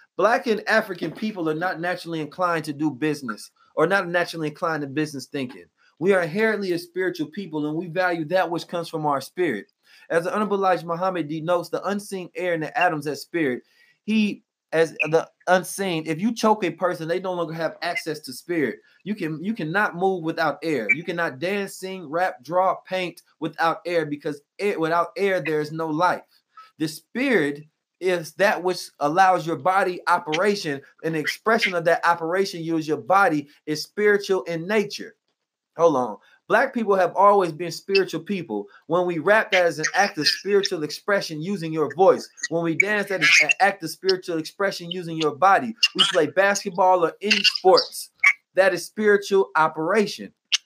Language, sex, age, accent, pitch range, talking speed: English, male, 30-49, American, 160-195 Hz, 180 wpm